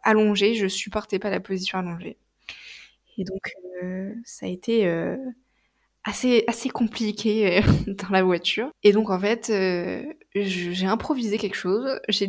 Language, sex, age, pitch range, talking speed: French, female, 20-39, 195-245 Hz, 155 wpm